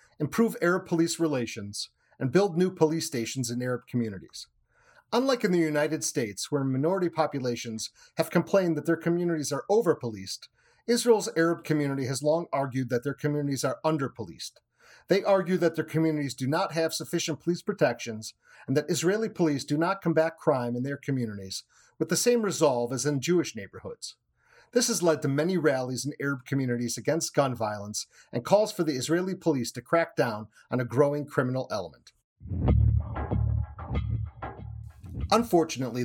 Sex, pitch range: male, 125-165 Hz